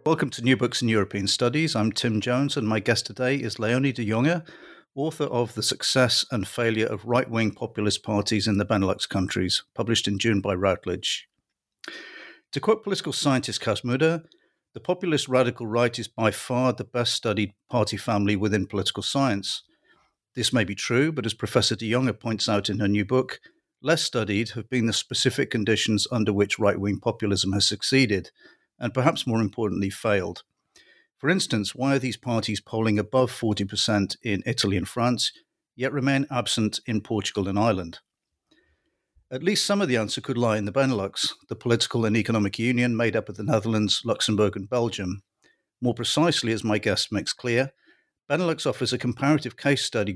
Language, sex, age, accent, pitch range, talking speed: English, male, 50-69, British, 105-130 Hz, 180 wpm